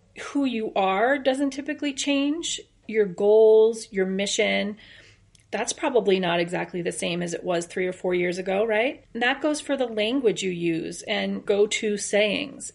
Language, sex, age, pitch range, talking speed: English, female, 30-49, 190-235 Hz, 170 wpm